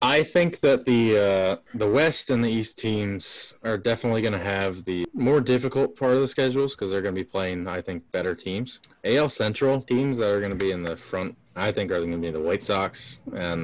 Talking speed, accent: 240 wpm, American